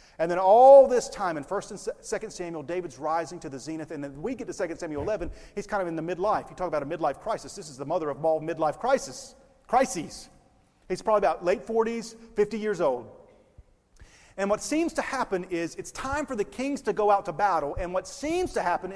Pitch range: 145-215 Hz